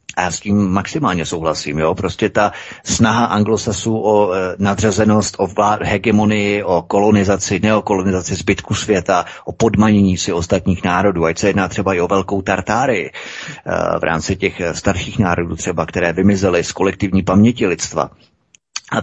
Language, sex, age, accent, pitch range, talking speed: Czech, male, 30-49, native, 95-110 Hz, 145 wpm